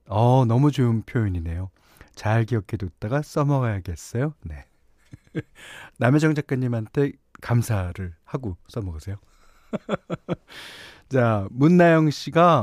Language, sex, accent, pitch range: Korean, male, native, 105-150 Hz